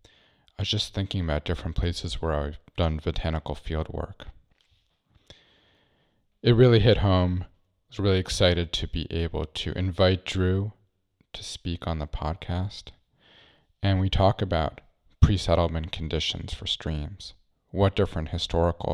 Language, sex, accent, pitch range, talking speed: English, male, American, 80-95 Hz, 135 wpm